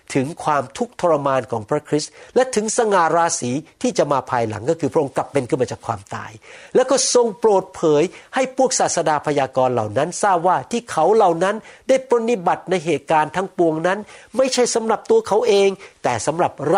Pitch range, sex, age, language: 150-235 Hz, male, 60-79, Thai